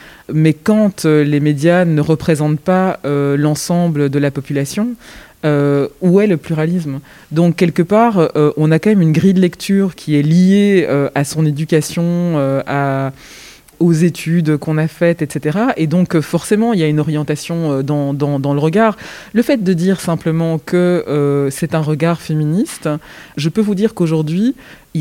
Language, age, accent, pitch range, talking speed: French, 20-39, French, 150-180 Hz, 180 wpm